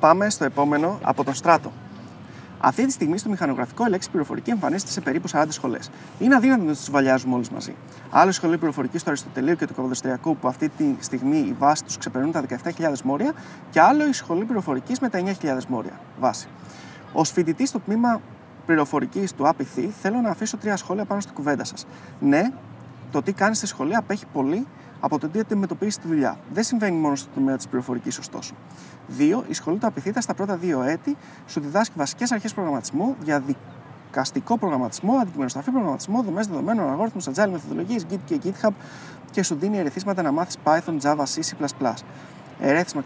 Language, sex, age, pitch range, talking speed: Greek, male, 30-49, 140-215 Hz, 180 wpm